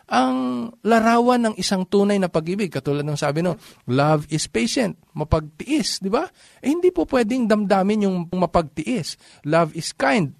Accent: native